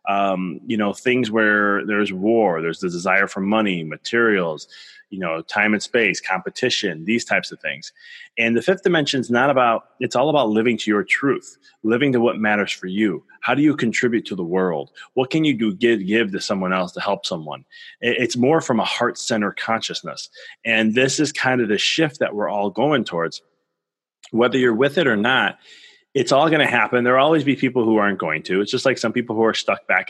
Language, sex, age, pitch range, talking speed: English, male, 30-49, 100-130 Hz, 215 wpm